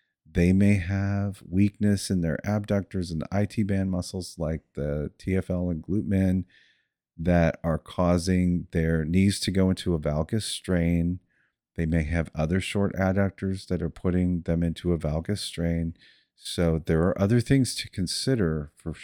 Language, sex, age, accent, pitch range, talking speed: English, male, 40-59, American, 80-100 Hz, 160 wpm